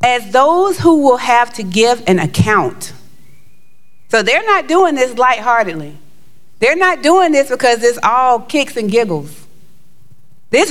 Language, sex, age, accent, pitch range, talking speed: English, female, 40-59, American, 175-265 Hz, 145 wpm